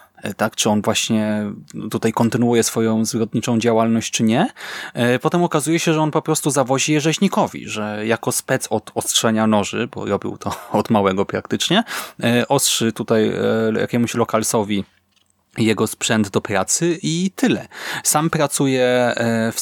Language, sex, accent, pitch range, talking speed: Polish, male, native, 110-130 Hz, 140 wpm